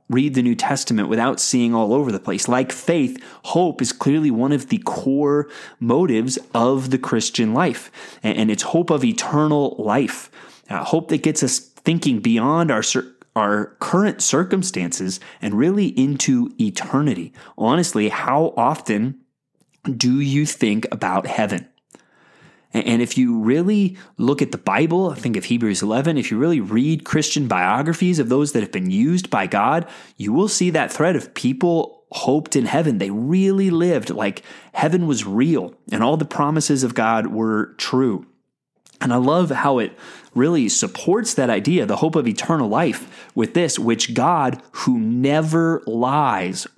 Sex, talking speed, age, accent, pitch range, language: male, 160 wpm, 30-49, American, 125-170 Hz, English